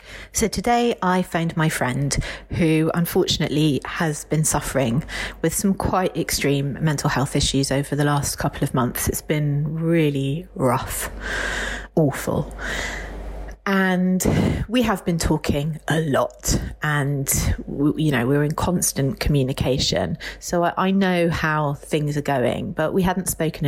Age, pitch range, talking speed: 30-49, 145-180 Hz, 140 wpm